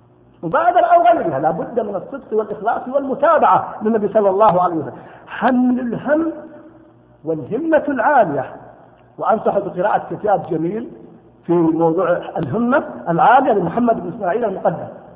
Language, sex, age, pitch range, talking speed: Arabic, male, 50-69, 215-315 Hz, 110 wpm